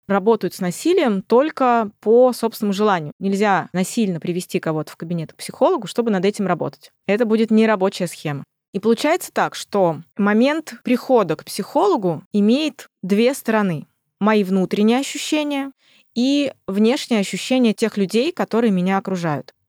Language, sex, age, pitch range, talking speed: Russian, female, 20-39, 180-240 Hz, 135 wpm